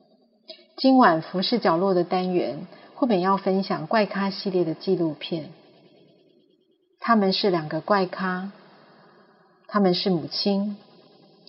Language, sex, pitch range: Chinese, female, 180-215 Hz